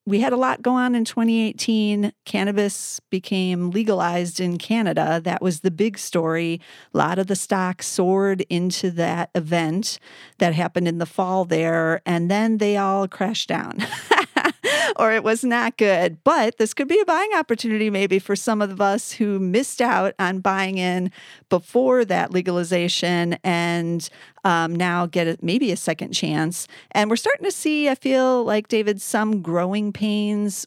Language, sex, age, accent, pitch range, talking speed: English, female, 40-59, American, 175-215 Hz, 170 wpm